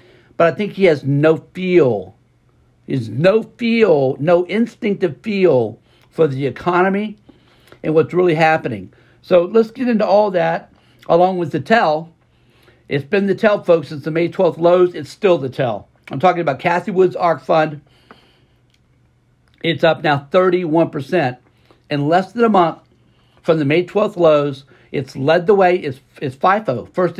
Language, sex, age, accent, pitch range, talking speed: English, male, 60-79, American, 145-185 Hz, 160 wpm